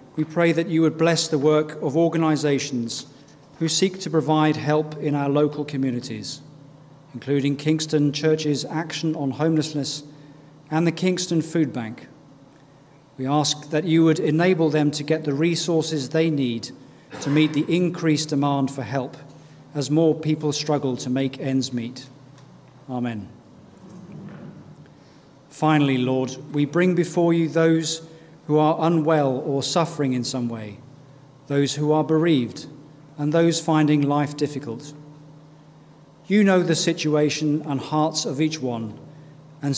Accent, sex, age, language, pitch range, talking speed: British, male, 40-59, English, 140-160 Hz, 140 wpm